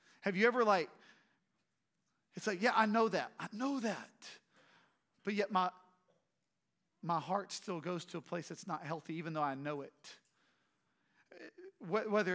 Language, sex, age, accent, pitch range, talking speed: English, male, 40-59, American, 170-210 Hz, 155 wpm